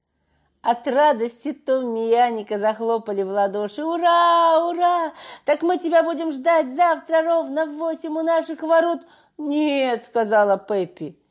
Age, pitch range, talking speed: 40-59, 205-320 Hz, 125 wpm